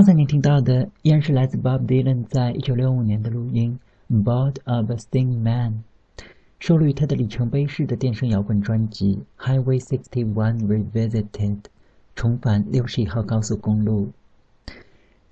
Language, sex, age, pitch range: Chinese, male, 50-69, 110-140 Hz